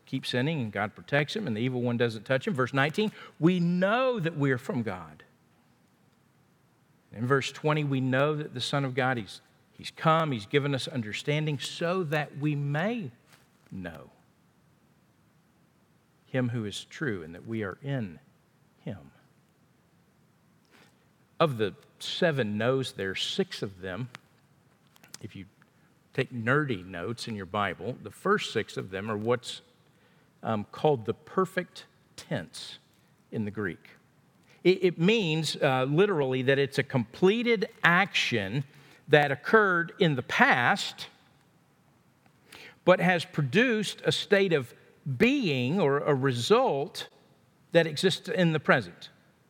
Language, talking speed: English, 140 wpm